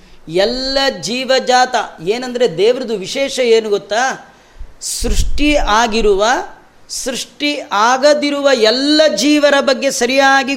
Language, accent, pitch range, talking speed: Kannada, native, 205-265 Hz, 85 wpm